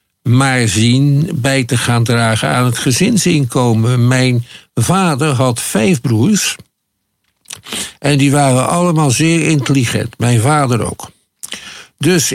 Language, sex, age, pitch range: Dutch, male, 50-69, 120-155 Hz